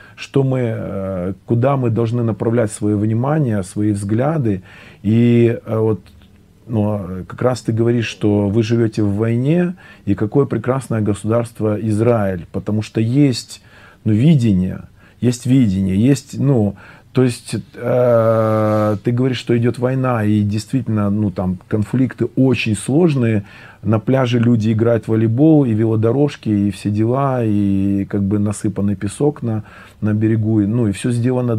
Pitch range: 105-120 Hz